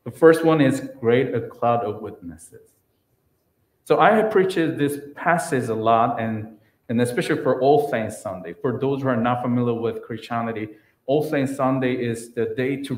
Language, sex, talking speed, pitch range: English, male, 180 wpm, 110-130 Hz